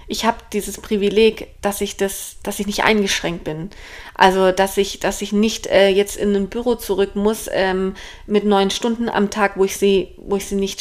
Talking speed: 210 wpm